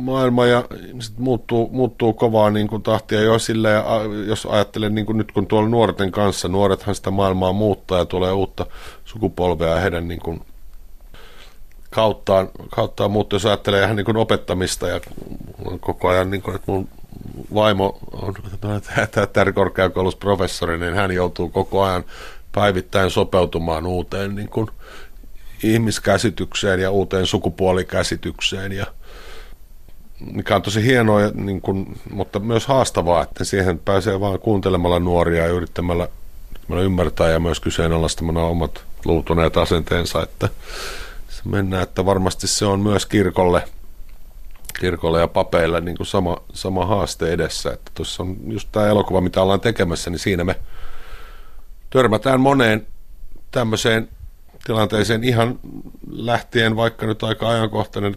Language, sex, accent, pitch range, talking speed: Finnish, male, native, 90-110 Hz, 130 wpm